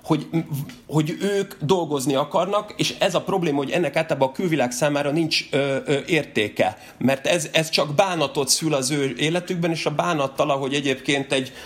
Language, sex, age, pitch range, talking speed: Hungarian, male, 30-49, 135-170 Hz, 175 wpm